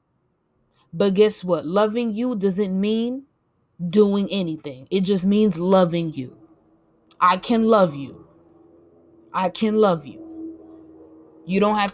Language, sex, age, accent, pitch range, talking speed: English, female, 20-39, American, 155-205 Hz, 125 wpm